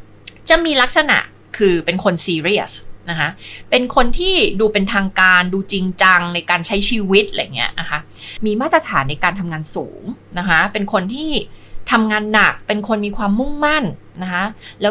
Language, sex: Thai, female